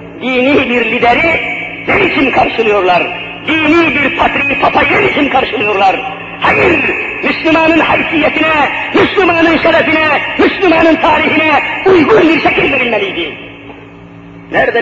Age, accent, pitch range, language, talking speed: 50-69, native, 240-330 Hz, Turkish, 95 wpm